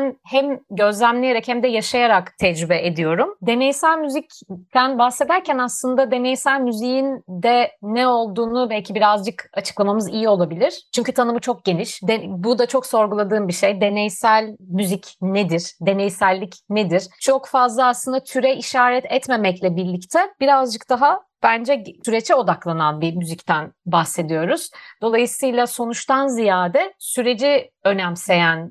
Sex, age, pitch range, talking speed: female, 40-59, 185-245 Hz, 115 wpm